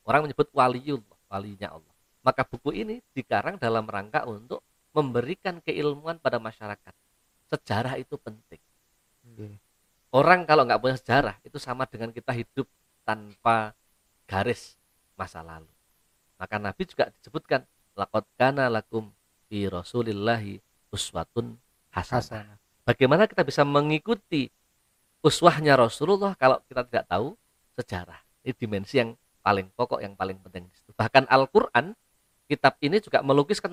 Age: 40-59